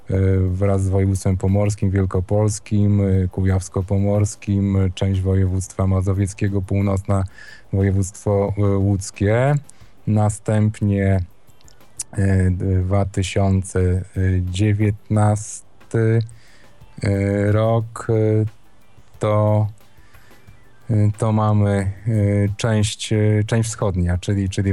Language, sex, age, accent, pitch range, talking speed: Polish, male, 20-39, native, 95-110 Hz, 55 wpm